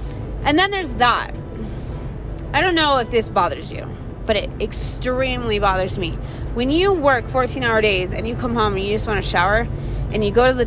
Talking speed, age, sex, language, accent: 200 wpm, 20-39, female, English, American